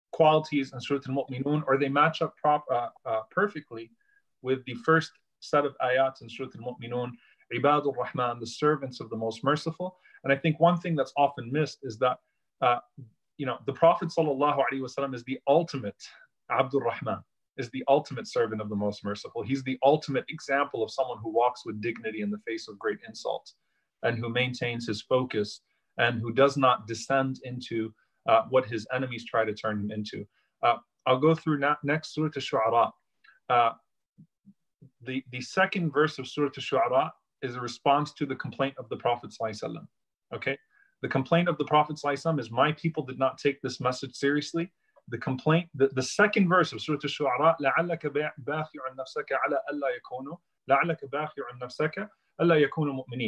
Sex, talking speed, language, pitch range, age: male, 185 wpm, English, 125-155 Hz, 30-49